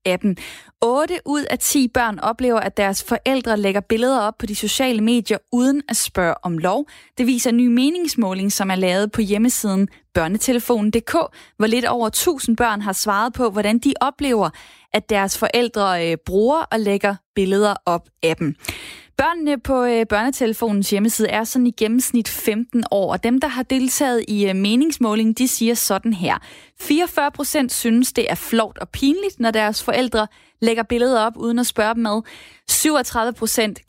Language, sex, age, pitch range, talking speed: Danish, female, 20-39, 210-255 Hz, 165 wpm